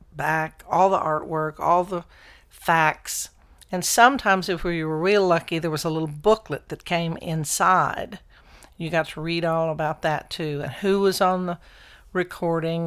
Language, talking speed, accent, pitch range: English, 175 wpm, American, 165-210 Hz